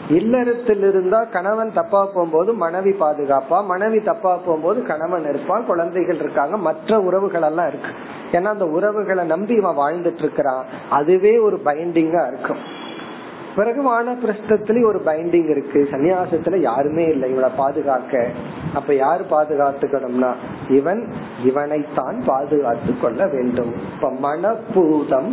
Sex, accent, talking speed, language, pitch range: male, native, 80 wpm, Tamil, 140-180 Hz